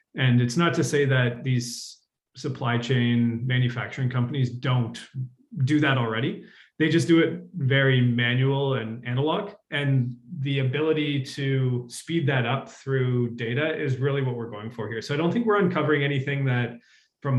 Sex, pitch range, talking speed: male, 120-145 Hz, 165 wpm